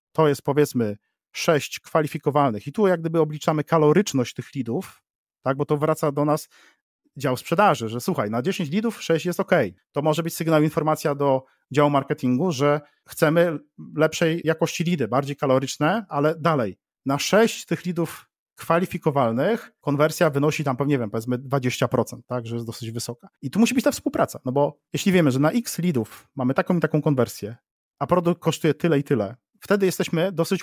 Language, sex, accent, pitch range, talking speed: Polish, male, native, 130-170 Hz, 180 wpm